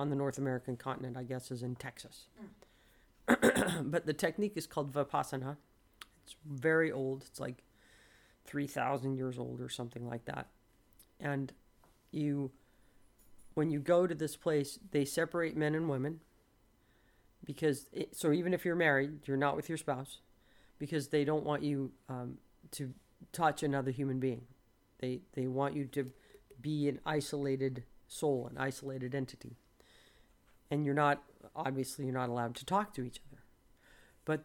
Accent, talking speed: American, 155 wpm